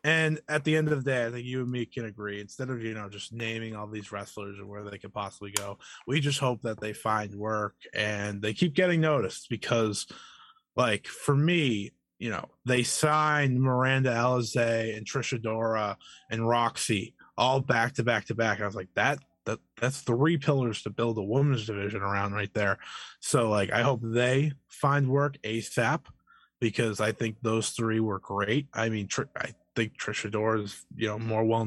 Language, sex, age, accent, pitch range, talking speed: English, male, 20-39, American, 105-130 Hz, 195 wpm